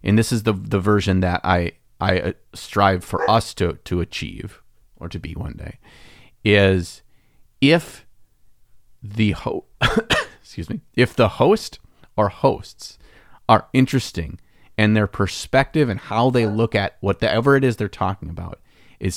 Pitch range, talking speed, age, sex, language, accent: 90-115 Hz, 150 wpm, 30-49, male, English, American